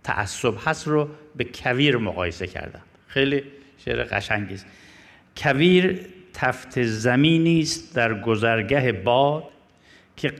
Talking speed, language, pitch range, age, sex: 105 wpm, Persian, 115-165 Hz, 50-69, male